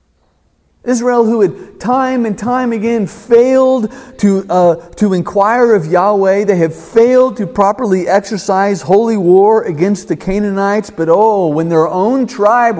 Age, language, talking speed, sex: 40-59, English, 145 wpm, male